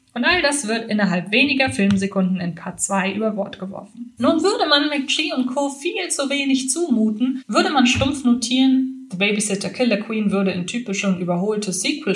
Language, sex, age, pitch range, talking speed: German, female, 20-39, 200-260 Hz, 185 wpm